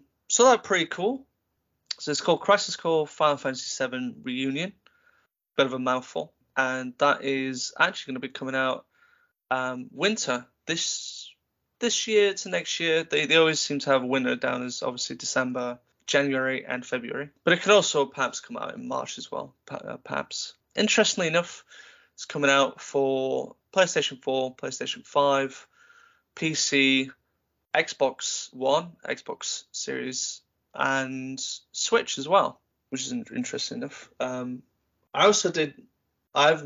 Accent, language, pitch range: British, English, 130-195 Hz